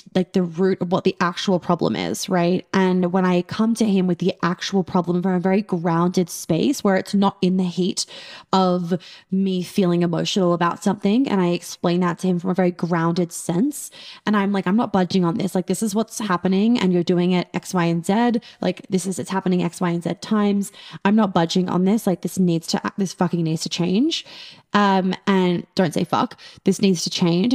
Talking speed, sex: 225 wpm, female